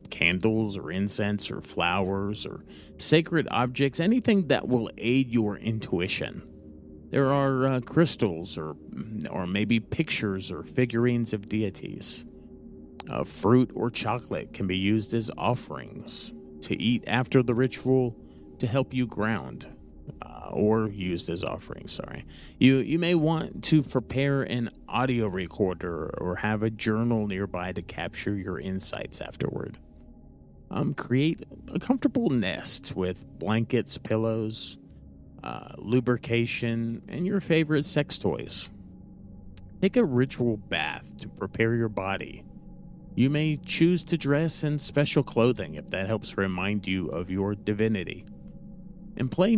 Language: English